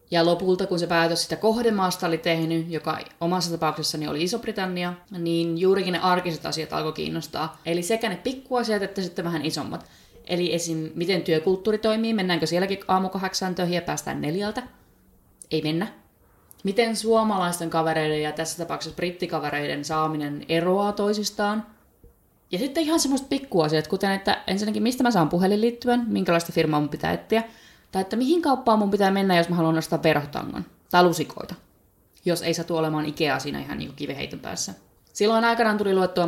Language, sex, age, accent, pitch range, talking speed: Finnish, female, 20-39, native, 165-205 Hz, 160 wpm